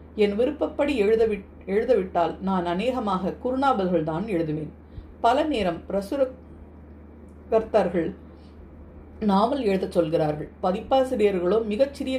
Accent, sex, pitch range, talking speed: native, female, 165-230 Hz, 80 wpm